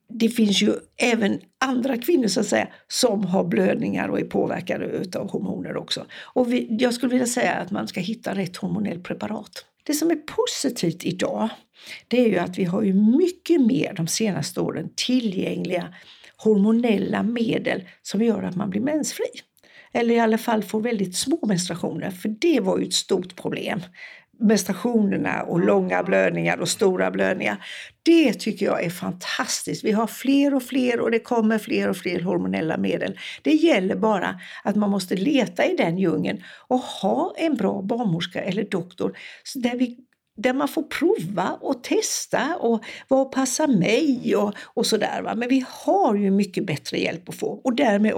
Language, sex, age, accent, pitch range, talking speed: English, female, 60-79, Swedish, 200-265 Hz, 175 wpm